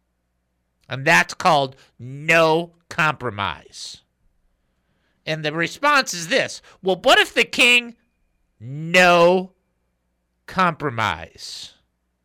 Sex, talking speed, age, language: male, 85 wpm, 50-69, English